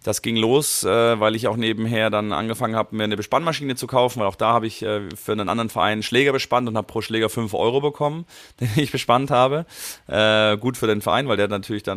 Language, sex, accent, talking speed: German, male, German, 245 wpm